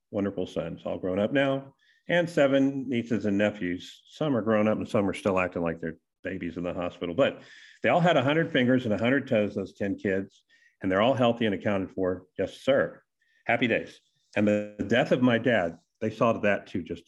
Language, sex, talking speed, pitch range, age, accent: English, male, 220 wpm, 95-135 Hz, 50-69, American